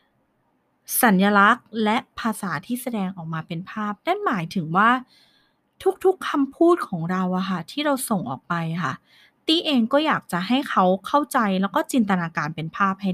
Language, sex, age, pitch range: Thai, female, 20-39, 190-260 Hz